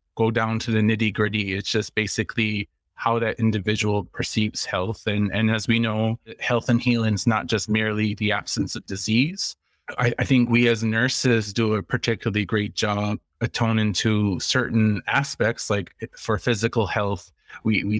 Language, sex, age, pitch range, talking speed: English, male, 20-39, 105-120 Hz, 175 wpm